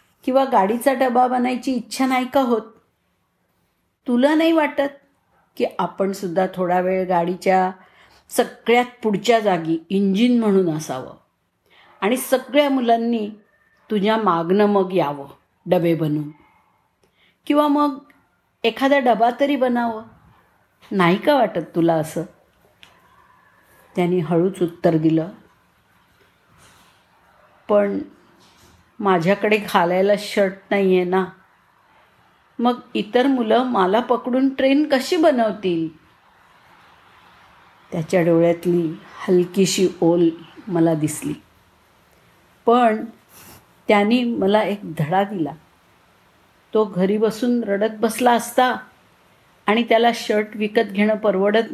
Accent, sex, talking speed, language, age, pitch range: native, female, 95 wpm, Marathi, 50-69, 185-240 Hz